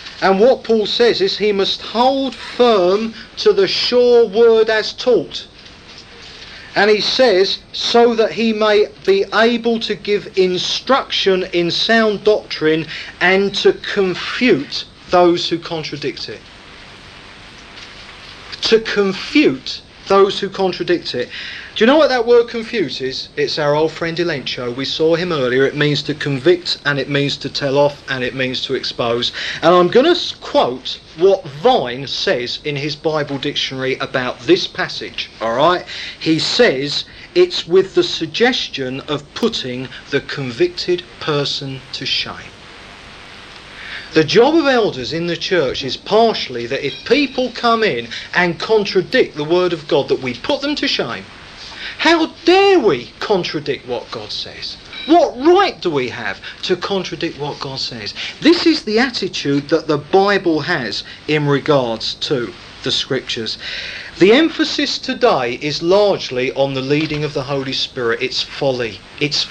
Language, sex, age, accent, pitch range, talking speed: English, male, 40-59, British, 135-225 Hz, 150 wpm